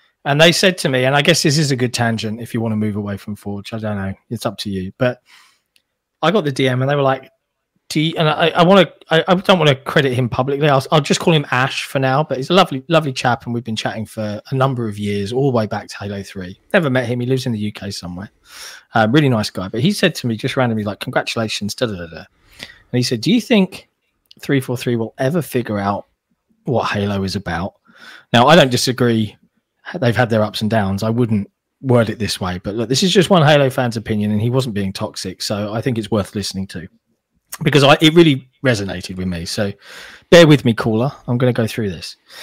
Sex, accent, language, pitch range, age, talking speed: male, British, English, 105-140 Hz, 20-39, 255 wpm